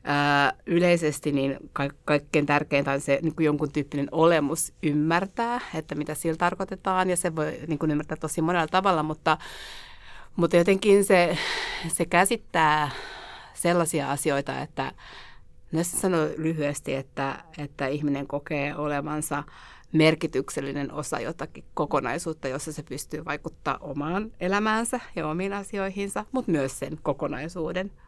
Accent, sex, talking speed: native, female, 125 wpm